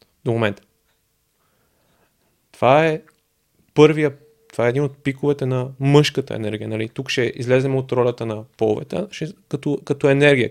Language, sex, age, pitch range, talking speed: Bulgarian, male, 30-49, 120-140 Hz, 135 wpm